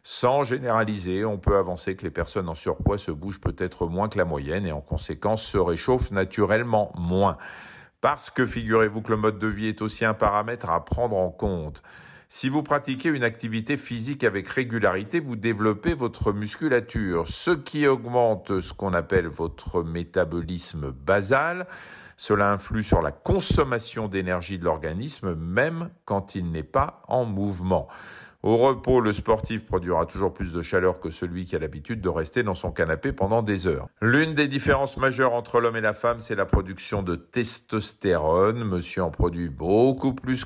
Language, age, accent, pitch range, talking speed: French, 40-59, French, 90-120 Hz, 175 wpm